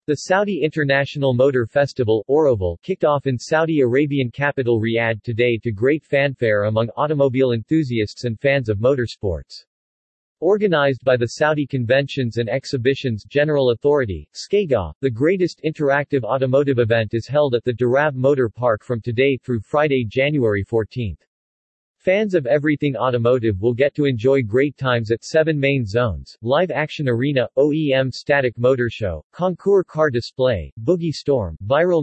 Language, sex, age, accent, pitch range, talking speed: English, male, 40-59, American, 115-150 Hz, 145 wpm